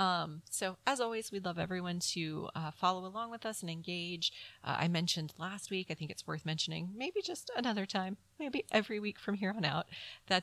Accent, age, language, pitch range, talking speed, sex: American, 30-49, English, 155-190 Hz, 215 wpm, female